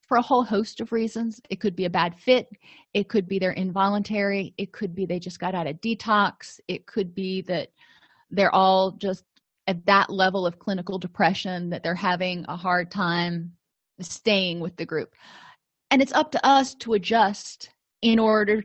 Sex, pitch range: female, 185-225 Hz